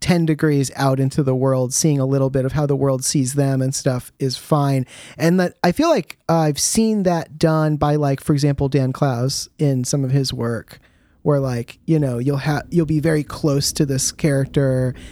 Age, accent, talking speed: 30-49, American, 215 wpm